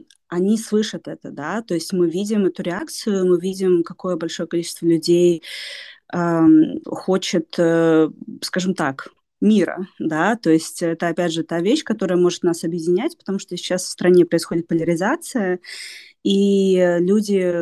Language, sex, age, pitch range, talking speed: Russian, female, 20-39, 165-200 Hz, 145 wpm